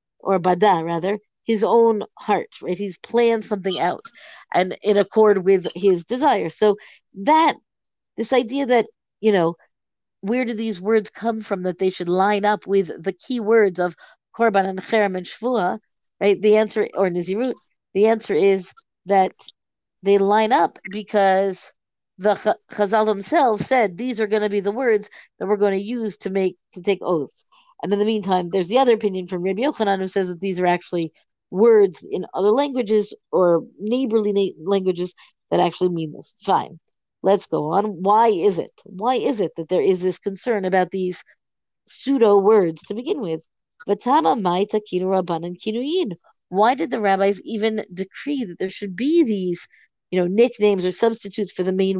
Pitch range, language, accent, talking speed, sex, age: 185-225 Hz, English, American, 170 wpm, female, 50-69